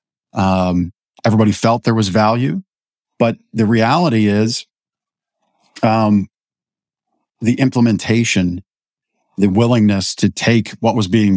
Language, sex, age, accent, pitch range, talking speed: English, male, 50-69, American, 95-110 Hz, 105 wpm